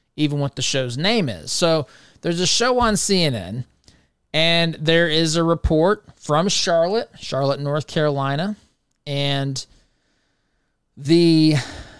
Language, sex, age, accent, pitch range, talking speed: English, male, 30-49, American, 135-170 Hz, 120 wpm